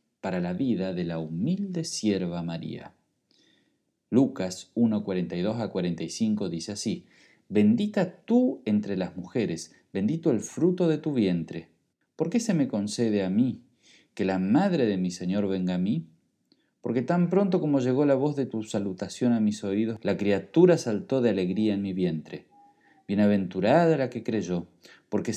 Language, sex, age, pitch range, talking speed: Spanish, male, 40-59, 95-140 Hz, 160 wpm